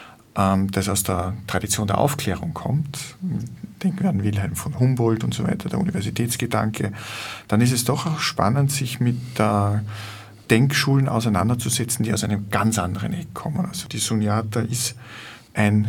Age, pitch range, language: 50-69, 105-125 Hz, German